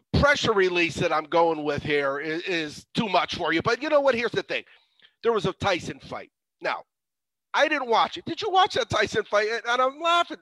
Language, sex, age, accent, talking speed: English, male, 40-59, American, 225 wpm